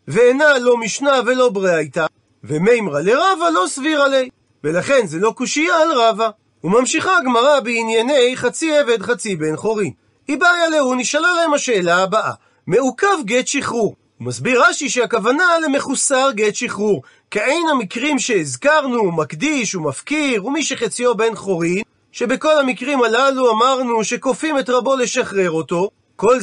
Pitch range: 205-280 Hz